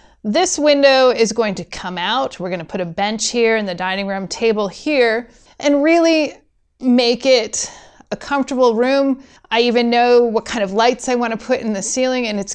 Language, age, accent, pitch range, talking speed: English, 30-49, American, 210-270 Hz, 195 wpm